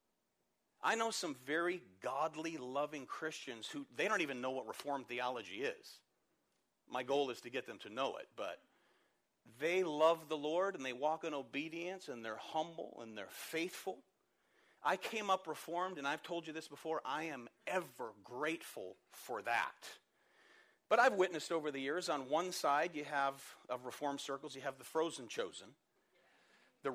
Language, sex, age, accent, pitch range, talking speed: English, male, 40-59, American, 145-185 Hz, 170 wpm